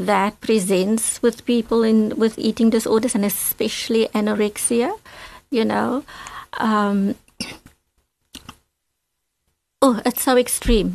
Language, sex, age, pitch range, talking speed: English, female, 50-69, 195-230 Hz, 100 wpm